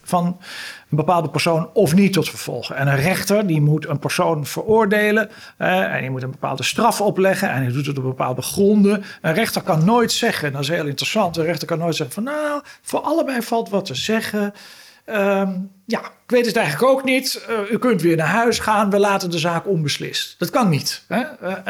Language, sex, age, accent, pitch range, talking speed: Dutch, male, 50-69, Dutch, 165-225 Hz, 220 wpm